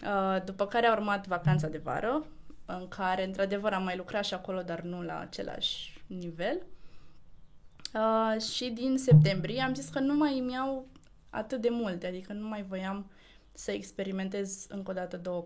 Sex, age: female, 20-39